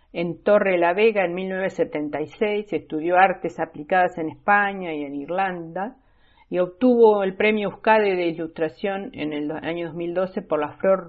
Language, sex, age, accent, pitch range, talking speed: Spanish, female, 50-69, Argentinian, 155-190 Hz, 150 wpm